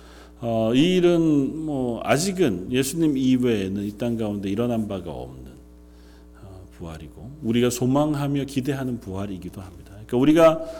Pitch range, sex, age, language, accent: 95-140 Hz, male, 40-59, Korean, native